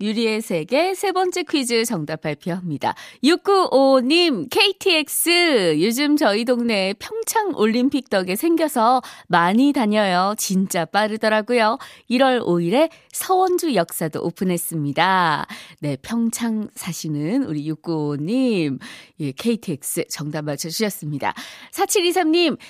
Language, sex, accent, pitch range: Korean, female, native, 190-290 Hz